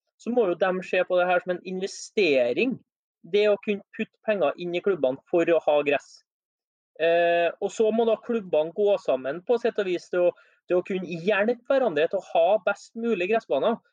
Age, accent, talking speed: 30-49, Swedish, 205 wpm